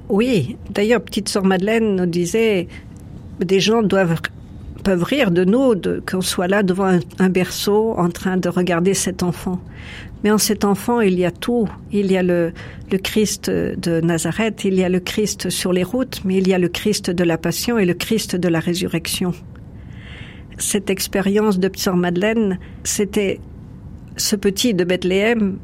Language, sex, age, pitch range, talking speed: French, female, 50-69, 175-200 Hz, 180 wpm